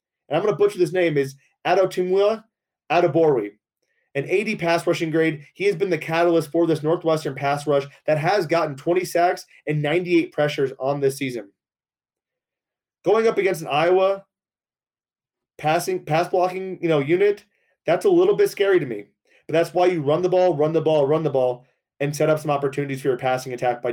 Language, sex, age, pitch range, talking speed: English, male, 30-49, 150-185 Hz, 195 wpm